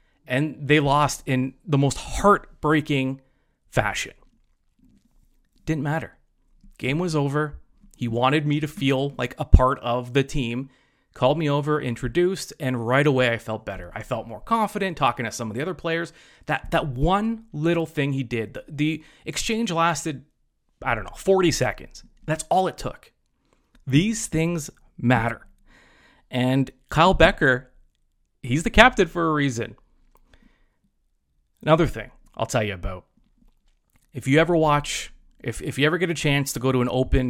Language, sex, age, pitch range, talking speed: English, male, 30-49, 120-160 Hz, 160 wpm